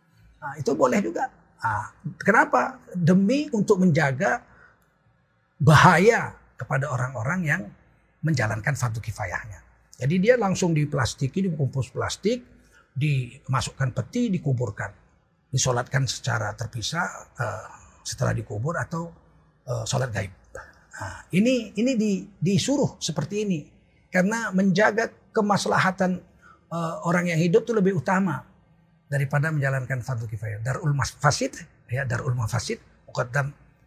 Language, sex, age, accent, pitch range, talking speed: Indonesian, male, 40-59, native, 125-185 Hz, 95 wpm